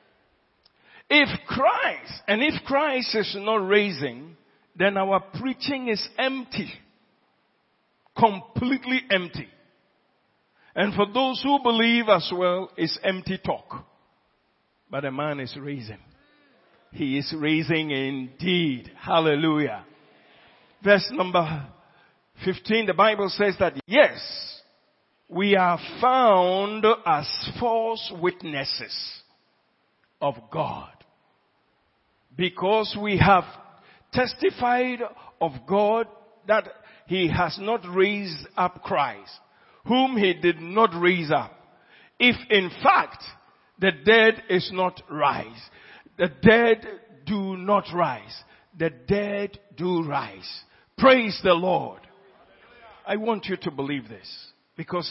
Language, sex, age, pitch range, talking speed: English, male, 50-69, 165-220 Hz, 105 wpm